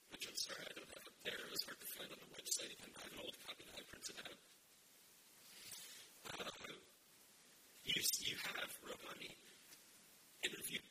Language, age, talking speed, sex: English, 40-59, 180 wpm, male